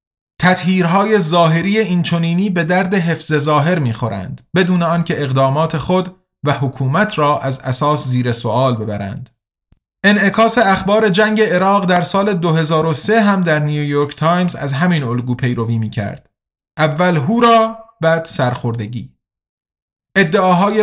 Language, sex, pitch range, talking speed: Persian, male, 135-180 Hz, 120 wpm